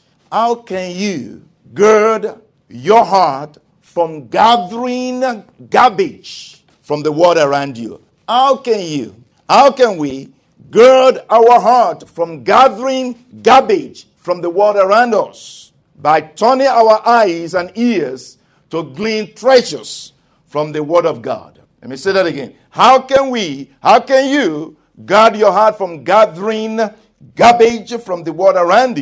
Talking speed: 135 wpm